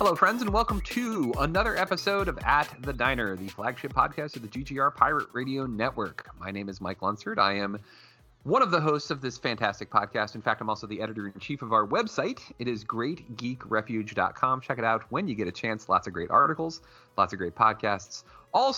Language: English